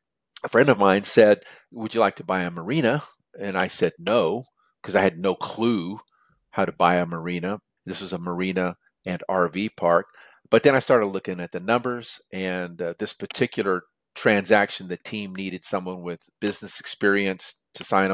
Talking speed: 180 wpm